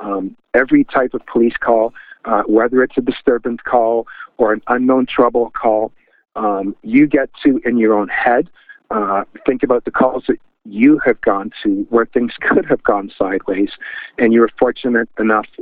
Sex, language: male, English